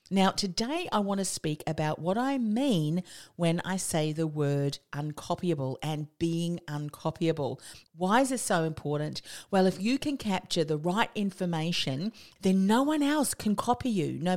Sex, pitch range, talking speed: female, 155-205 Hz, 165 wpm